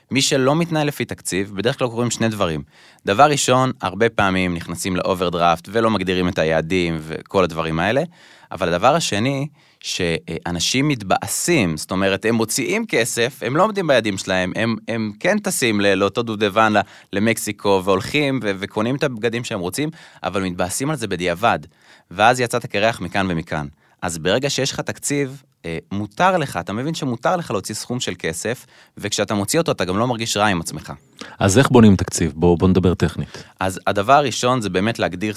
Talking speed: 170 wpm